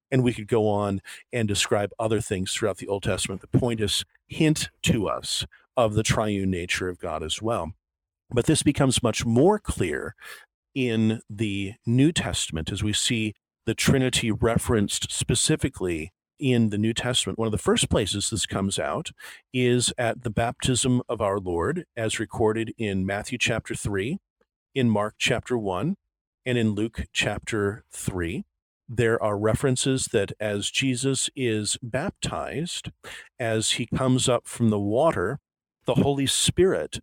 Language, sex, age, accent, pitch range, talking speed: English, male, 40-59, American, 105-130 Hz, 155 wpm